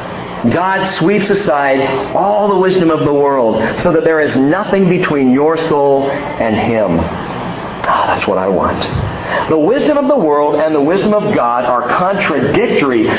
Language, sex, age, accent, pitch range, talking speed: English, male, 50-69, American, 140-190 Hz, 160 wpm